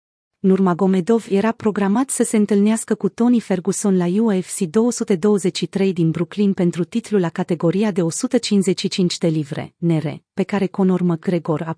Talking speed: 145 wpm